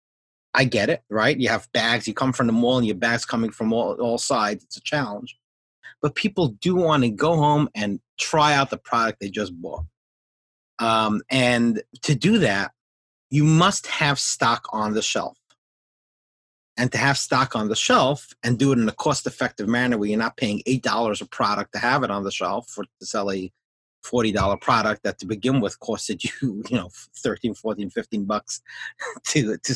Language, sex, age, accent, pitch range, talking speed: English, male, 30-49, American, 110-150 Hz, 200 wpm